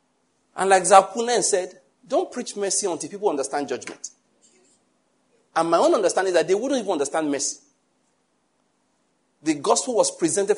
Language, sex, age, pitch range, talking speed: English, male, 50-69, 135-215 Hz, 145 wpm